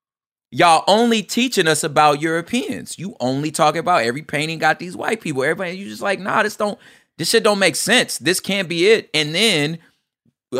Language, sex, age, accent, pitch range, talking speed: English, male, 30-49, American, 140-180 Hz, 200 wpm